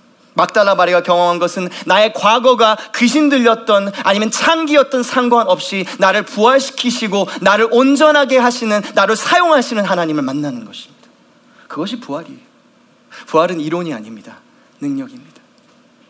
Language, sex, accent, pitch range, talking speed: English, male, Korean, 205-270 Hz, 95 wpm